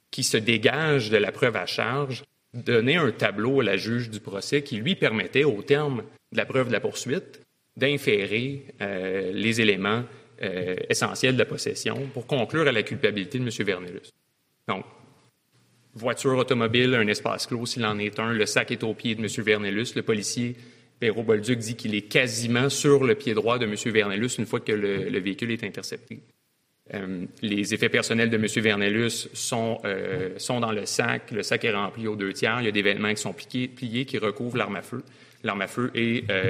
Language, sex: English, male